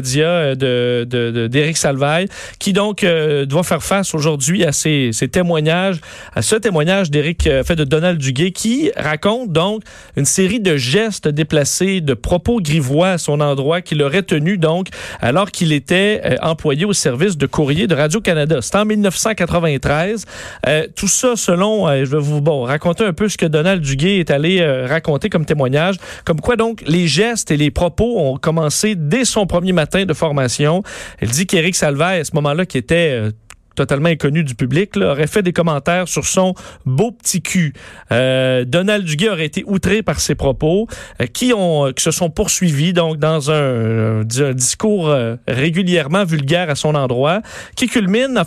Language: French